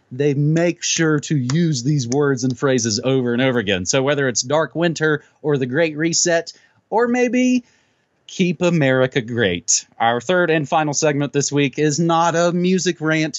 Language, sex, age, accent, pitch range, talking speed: English, male, 30-49, American, 120-165 Hz, 175 wpm